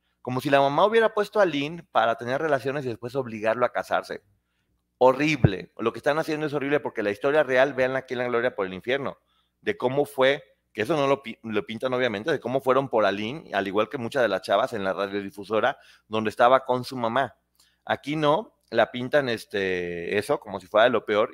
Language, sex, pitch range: Spanish, male, 100-145 Hz